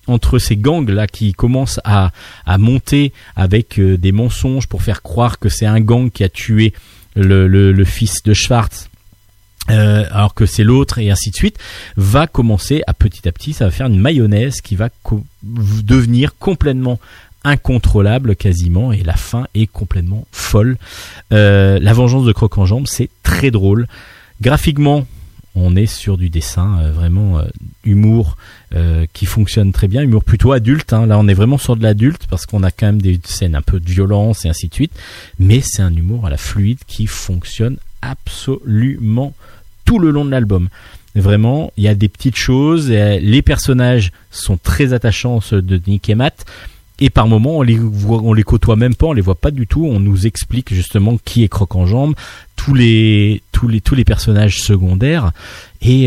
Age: 40-59